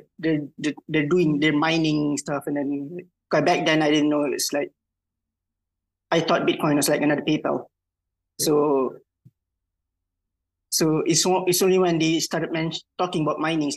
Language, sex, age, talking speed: English, male, 20-39, 155 wpm